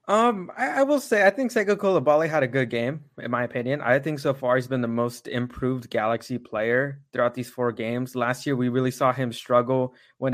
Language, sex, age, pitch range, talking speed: English, male, 20-39, 120-140 Hz, 225 wpm